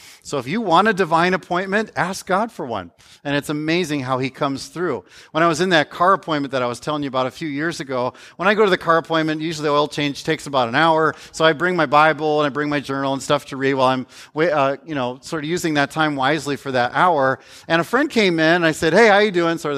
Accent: American